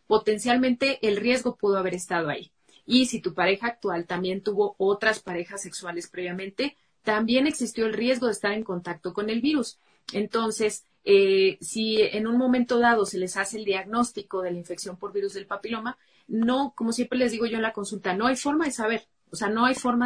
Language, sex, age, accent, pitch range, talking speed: Spanish, female, 30-49, Mexican, 190-235 Hz, 200 wpm